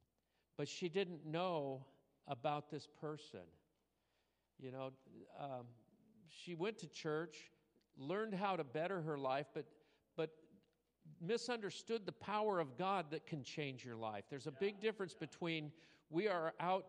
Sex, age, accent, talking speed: male, 50-69, American, 140 wpm